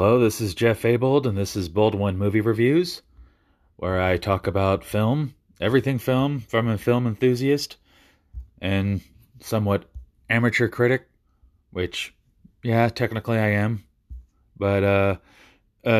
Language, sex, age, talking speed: English, male, 30-49, 130 wpm